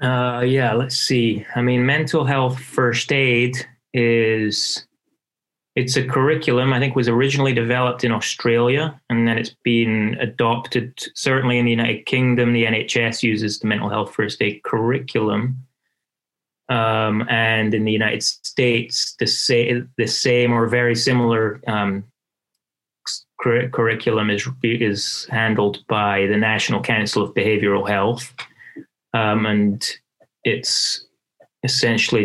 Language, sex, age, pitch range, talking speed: English, male, 20-39, 110-125 Hz, 125 wpm